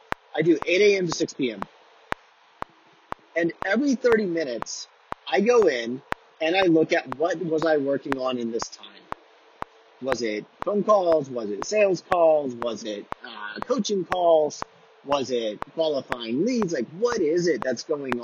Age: 30-49